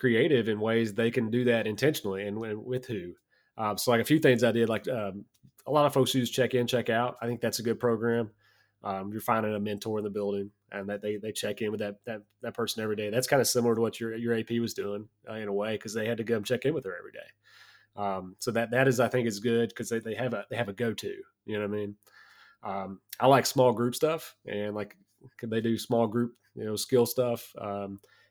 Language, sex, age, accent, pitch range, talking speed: English, male, 30-49, American, 105-120 Hz, 265 wpm